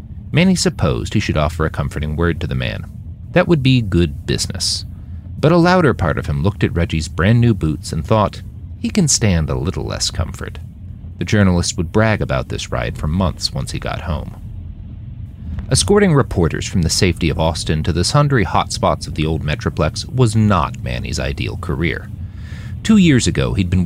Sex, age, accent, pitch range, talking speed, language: male, 40-59, American, 85-110 Hz, 190 wpm, English